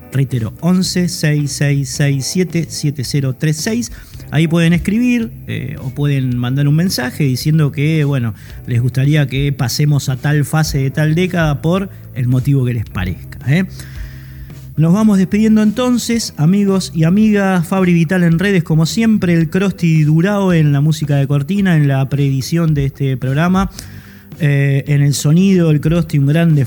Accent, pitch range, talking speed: Argentinian, 135-170 Hz, 150 wpm